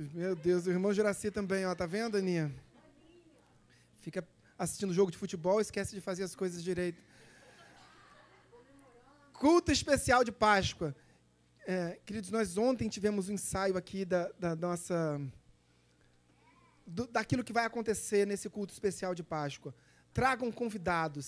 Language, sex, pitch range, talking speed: Portuguese, male, 170-215 Hz, 140 wpm